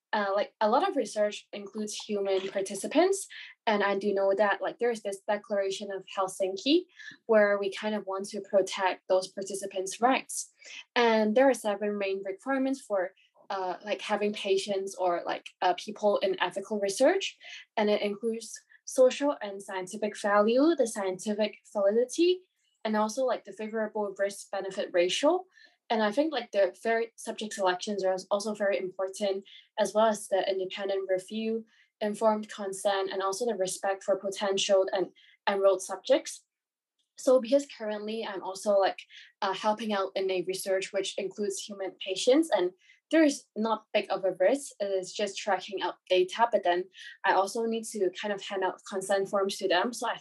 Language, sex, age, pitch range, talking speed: English, female, 20-39, 195-230 Hz, 165 wpm